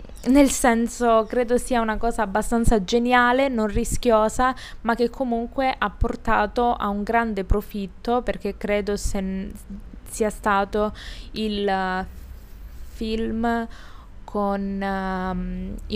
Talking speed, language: 110 wpm, Italian